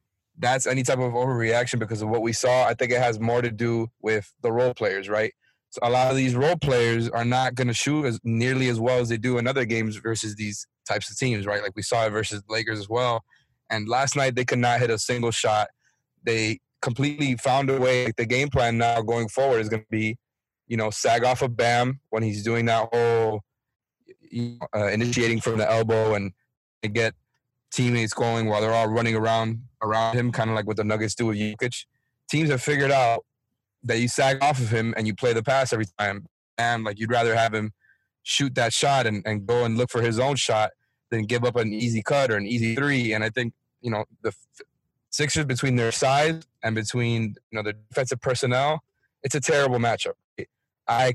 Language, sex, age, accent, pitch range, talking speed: English, male, 20-39, American, 110-125 Hz, 225 wpm